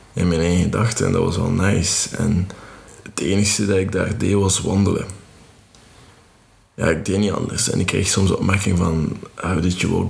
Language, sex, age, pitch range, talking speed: Dutch, male, 20-39, 95-110 Hz, 195 wpm